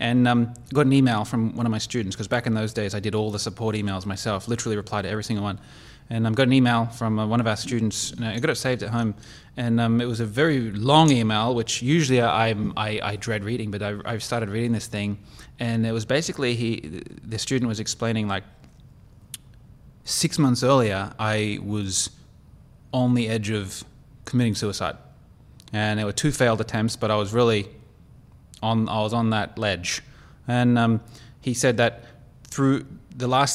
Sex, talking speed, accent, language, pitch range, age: male, 205 wpm, Australian, English, 110-130 Hz, 20-39